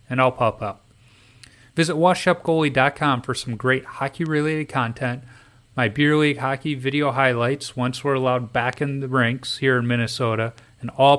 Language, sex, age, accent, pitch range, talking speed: English, male, 30-49, American, 120-150 Hz, 155 wpm